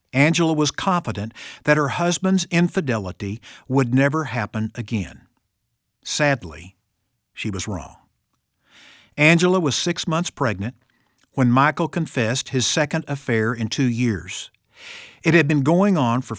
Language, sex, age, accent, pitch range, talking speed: English, male, 50-69, American, 110-150 Hz, 130 wpm